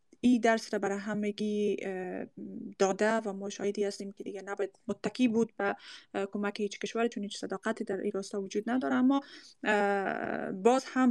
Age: 20-39